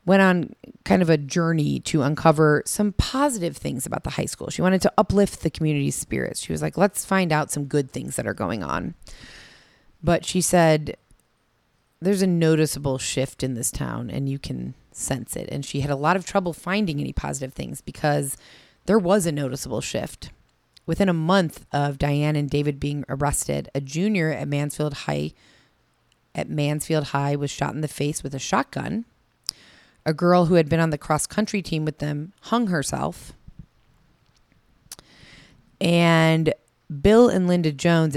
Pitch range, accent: 140-170 Hz, American